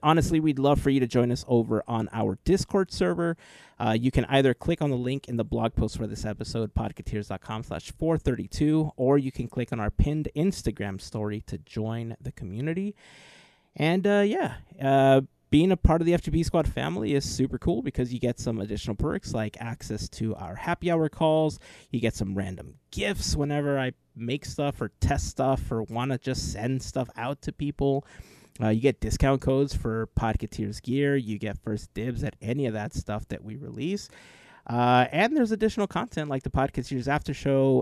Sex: male